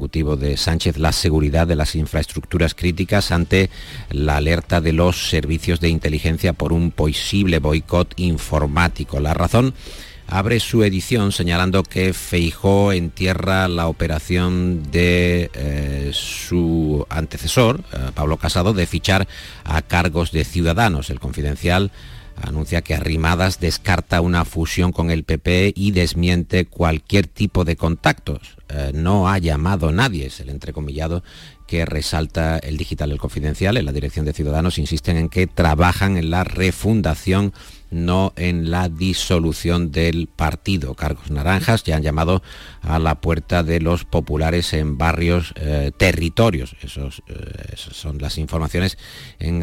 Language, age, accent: Spanish, 50-69, Spanish